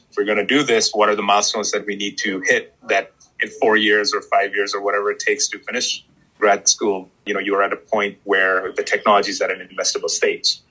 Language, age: English, 30-49